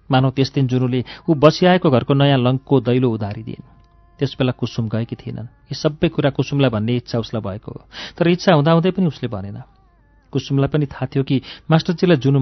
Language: English